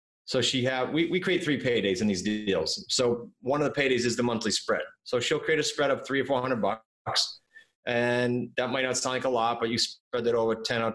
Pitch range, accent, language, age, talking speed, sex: 115-140 Hz, American, English, 30-49, 245 wpm, male